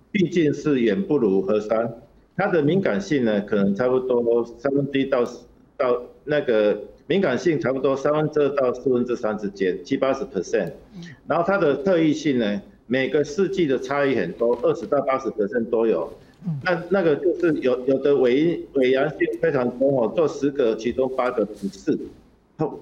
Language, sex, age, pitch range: Chinese, male, 50-69, 125-160 Hz